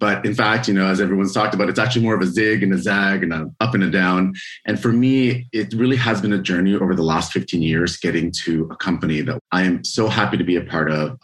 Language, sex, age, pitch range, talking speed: English, male, 30-49, 90-110 Hz, 280 wpm